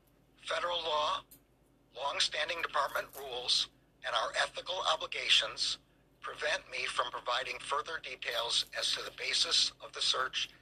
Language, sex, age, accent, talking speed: English, male, 60-79, American, 125 wpm